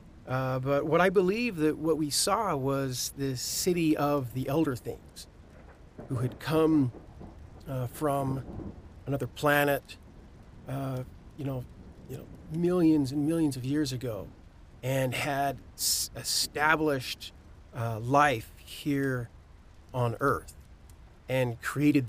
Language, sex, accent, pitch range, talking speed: English, male, American, 110-150 Hz, 120 wpm